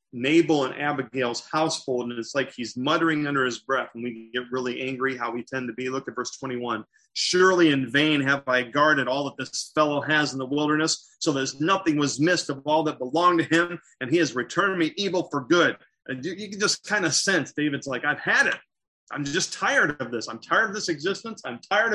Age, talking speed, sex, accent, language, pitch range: 30-49, 230 wpm, male, American, English, 130-175 Hz